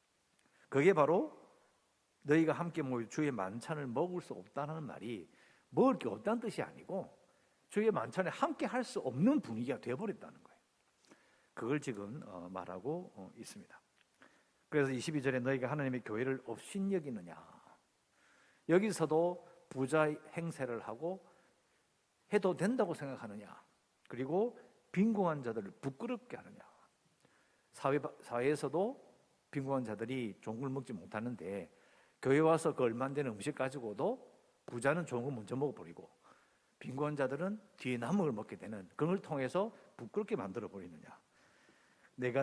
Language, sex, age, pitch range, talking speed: English, male, 50-69, 130-180 Hz, 110 wpm